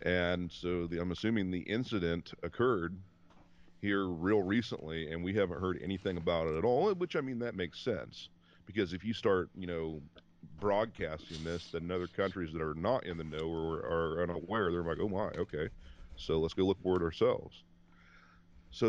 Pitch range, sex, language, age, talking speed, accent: 85-95 Hz, male, English, 40-59, 185 wpm, American